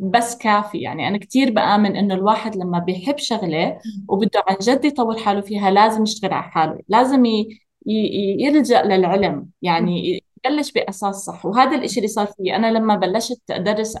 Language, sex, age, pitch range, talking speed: English, female, 20-39, 195-245 Hz, 165 wpm